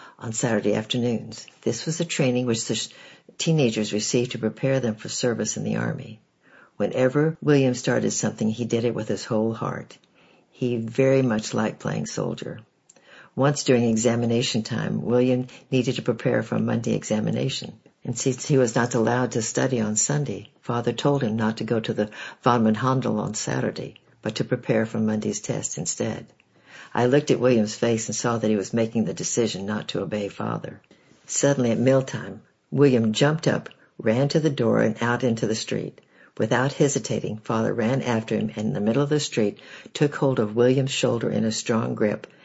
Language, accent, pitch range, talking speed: English, American, 110-130 Hz, 185 wpm